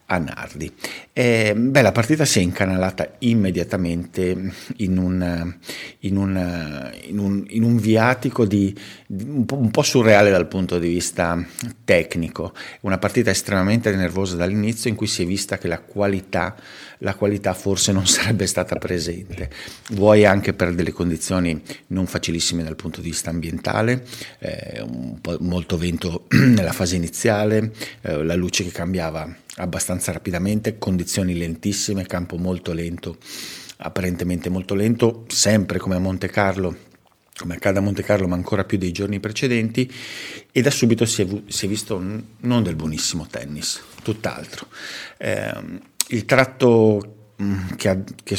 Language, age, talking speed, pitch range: Italian, 50-69, 135 wpm, 90-110 Hz